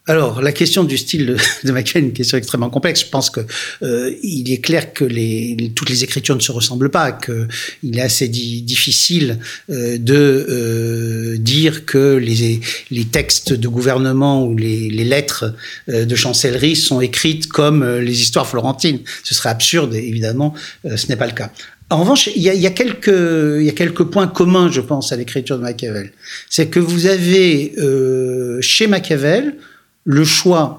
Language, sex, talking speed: French, male, 185 wpm